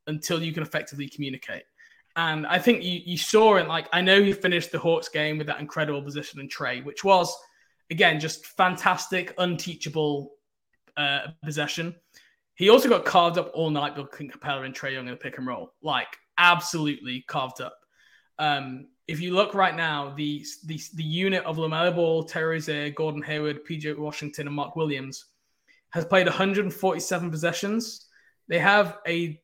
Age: 20-39